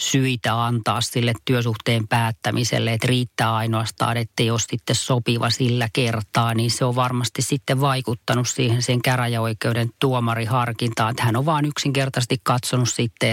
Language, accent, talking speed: Finnish, native, 145 wpm